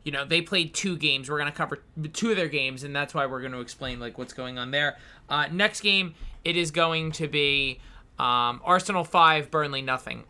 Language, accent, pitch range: English, American, 145-190 Hz